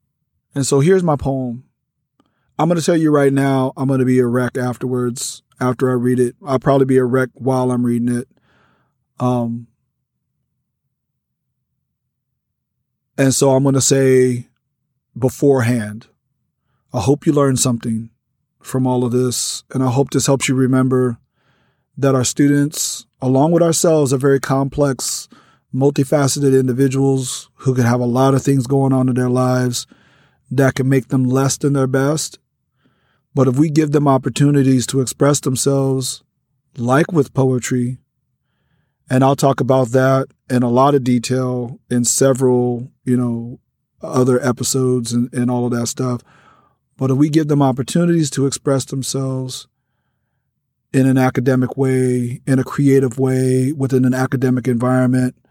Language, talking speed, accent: English, 155 wpm, American